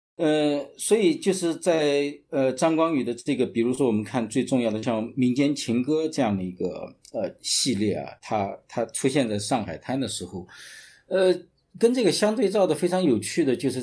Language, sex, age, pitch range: Chinese, male, 50-69, 115-150 Hz